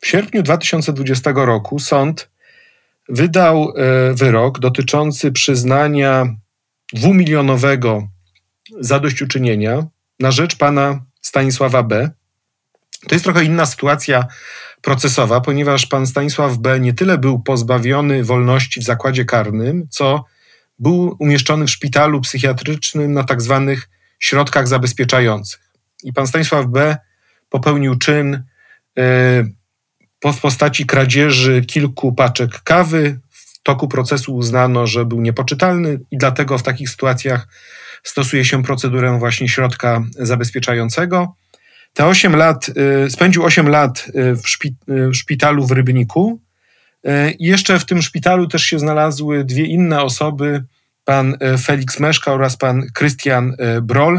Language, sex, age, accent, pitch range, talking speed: Polish, male, 40-59, native, 125-150 Hz, 115 wpm